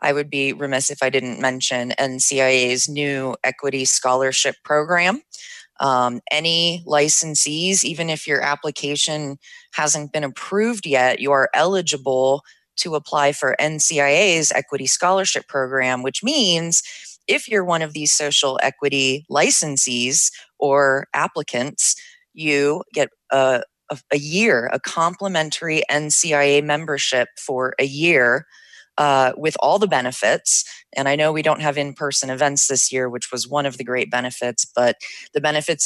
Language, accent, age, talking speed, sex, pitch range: English, American, 20-39, 140 wpm, female, 130-160 Hz